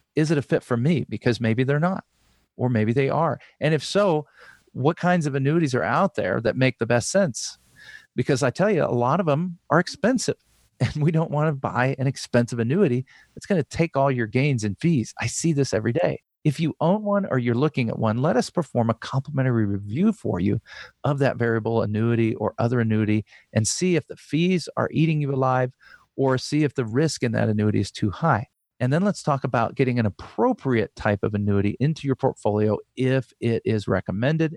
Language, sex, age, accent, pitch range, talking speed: English, male, 40-59, American, 110-150 Hz, 210 wpm